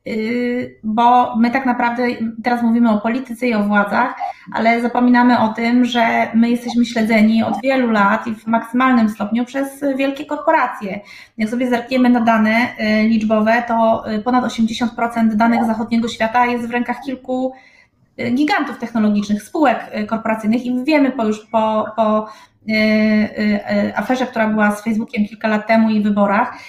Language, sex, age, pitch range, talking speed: Polish, female, 20-39, 215-245 Hz, 145 wpm